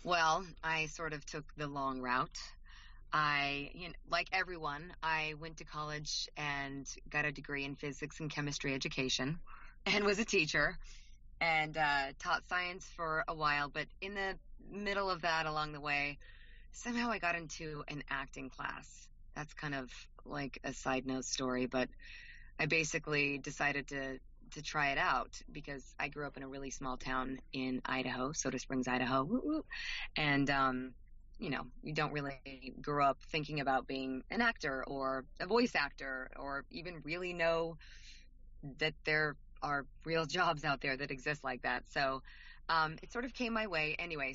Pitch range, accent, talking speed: 135-165 Hz, American, 170 wpm